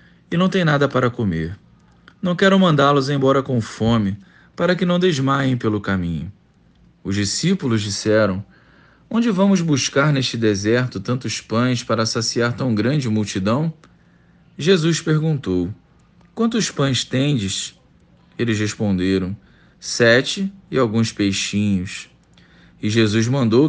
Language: Portuguese